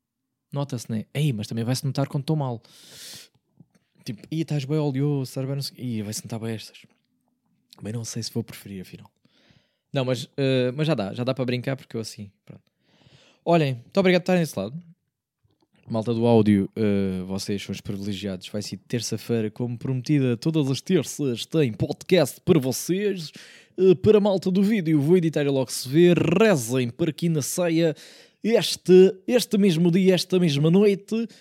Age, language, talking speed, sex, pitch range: 20-39, Portuguese, 180 wpm, male, 125-180 Hz